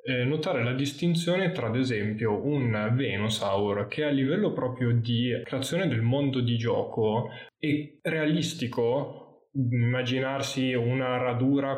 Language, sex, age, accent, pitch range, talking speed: Italian, male, 10-29, native, 110-135 Hz, 115 wpm